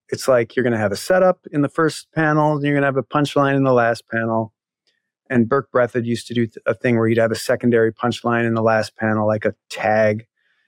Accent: American